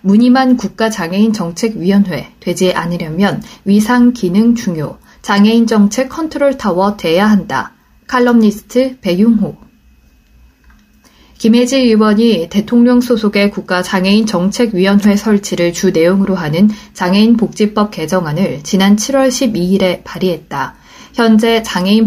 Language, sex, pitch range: Korean, female, 185-235 Hz